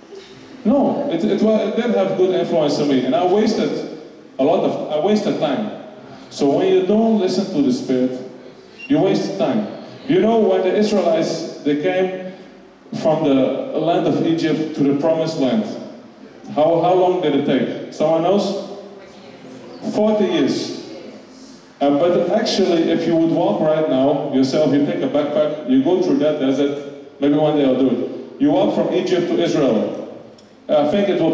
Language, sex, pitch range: English, male, 155-220 Hz